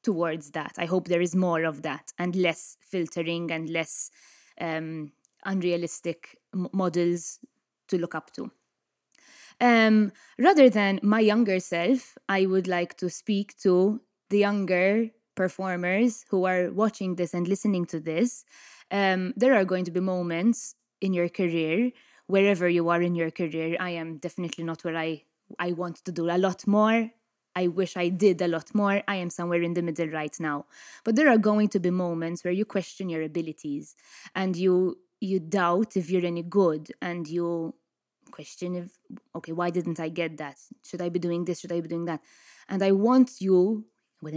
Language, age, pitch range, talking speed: English, 20-39, 170-210 Hz, 180 wpm